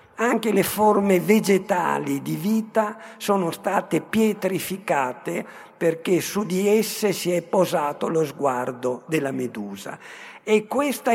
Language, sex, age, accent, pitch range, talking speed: Italian, male, 50-69, native, 170-215 Hz, 120 wpm